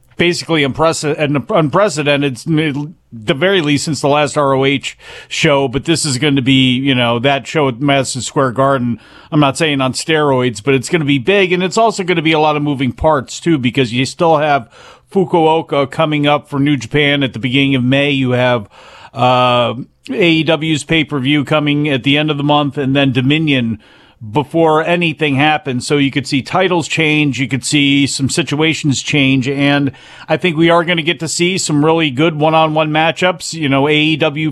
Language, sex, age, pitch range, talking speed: English, male, 40-59, 135-160 Hz, 195 wpm